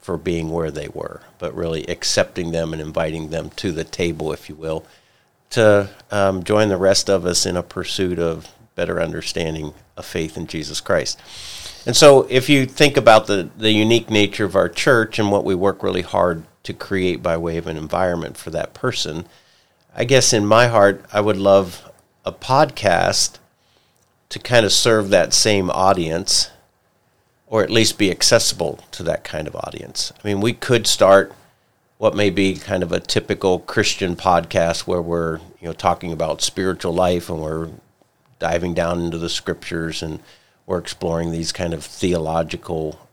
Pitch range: 85-110 Hz